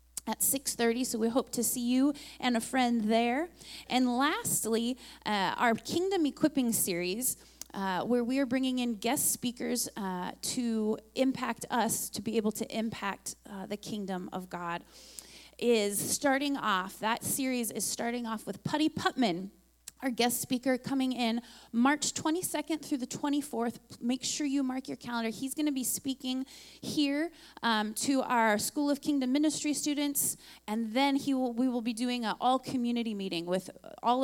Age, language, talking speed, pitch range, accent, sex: 30-49, English, 170 wpm, 215-270 Hz, American, female